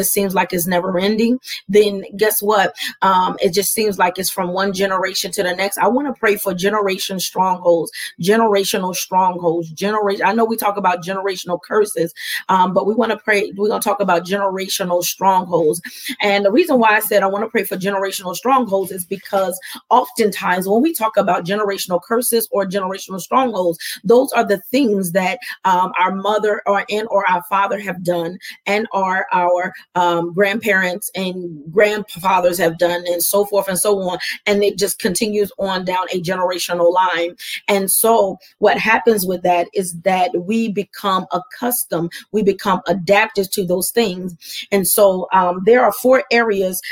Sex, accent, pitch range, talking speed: female, American, 180-210 Hz, 175 wpm